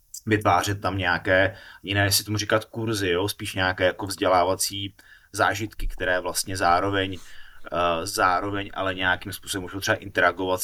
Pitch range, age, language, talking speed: 95-110 Hz, 20-39, Slovak, 140 wpm